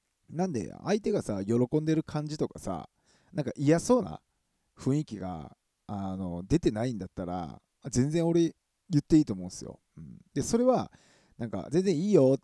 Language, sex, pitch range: Japanese, male, 100-170 Hz